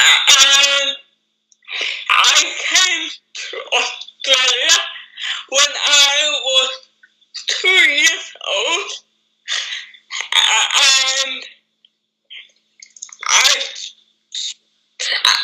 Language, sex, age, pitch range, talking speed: English, female, 10-29, 265-420 Hz, 50 wpm